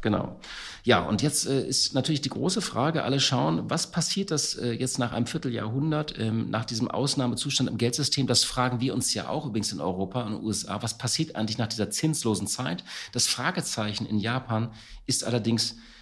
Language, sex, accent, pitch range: German, male, German, 110-140 Hz